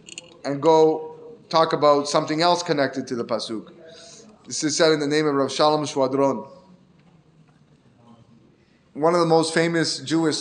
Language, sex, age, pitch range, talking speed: English, male, 20-39, 130-160 Hz, 150 wpm